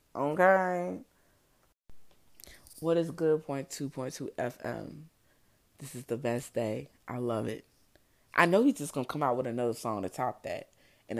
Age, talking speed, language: 20-39, 170 wpm, English